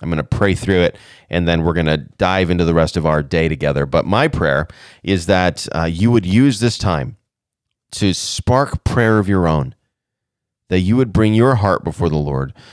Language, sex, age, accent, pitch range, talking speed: English, male, 30-49, American, 90-120 Hz, 210 wpm